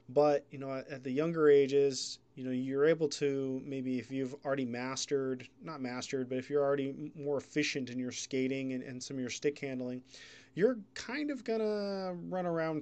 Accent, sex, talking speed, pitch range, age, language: American, male, 185 wpm, 125-145 Hz, 20-39, English